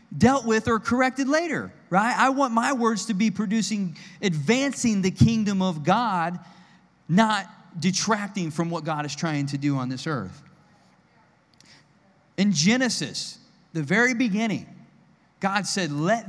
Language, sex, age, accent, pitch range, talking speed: English, male, 40-59, American, 170-220 Hz, 140 wpm